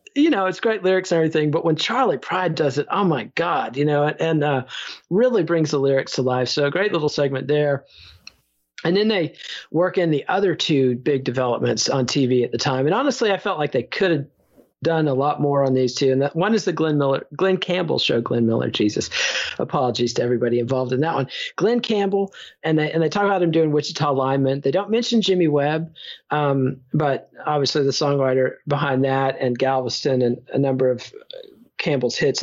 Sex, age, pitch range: male, 40-59, 130-165 Hz